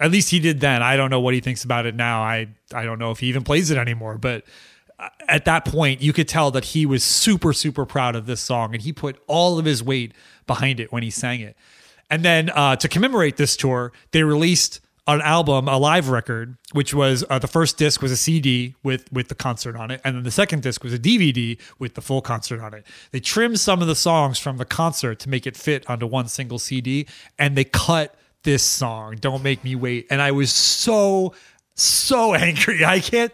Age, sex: 30-49, male